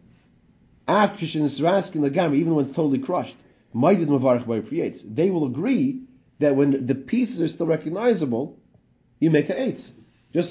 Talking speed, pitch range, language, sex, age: 130 wpm, 130-170 Hz, English, male, 40-59